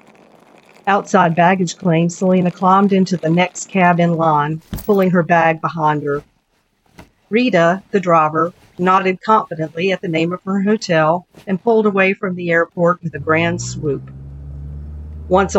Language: English